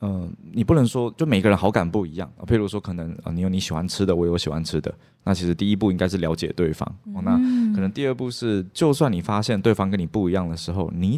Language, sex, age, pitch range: Chinese, male, 20-39, 90-115 Hz